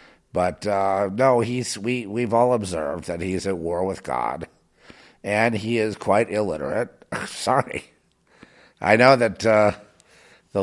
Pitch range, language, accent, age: 95-120 Hz, English, American, 50-69